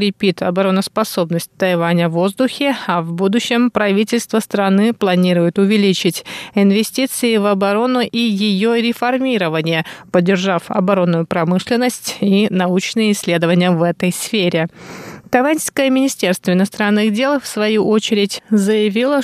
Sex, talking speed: female, 105 wpm